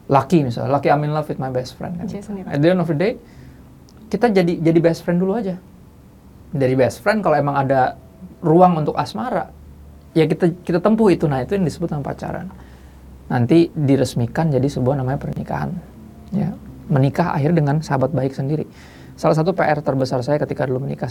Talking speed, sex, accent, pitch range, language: 180 wpm, male, native, 135-175 Hz, Indonesian